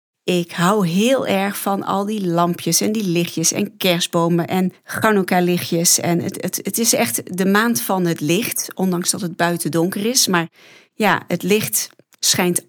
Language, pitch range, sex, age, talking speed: Dutch, 175-230 Hz, female, 40-59, 165 wpm